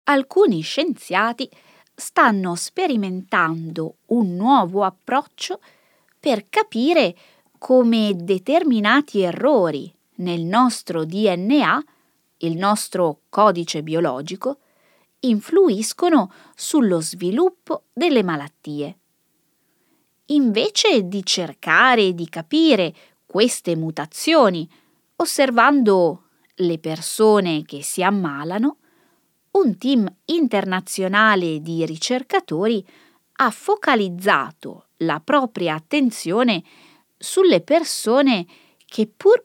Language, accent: Italian, native